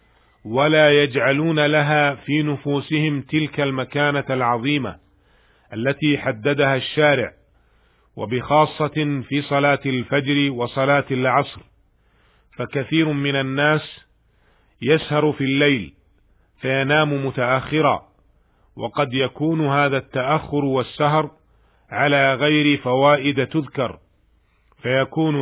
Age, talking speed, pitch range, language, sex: 40-59, 85 wpm, 125-145 Hz, Arabic, male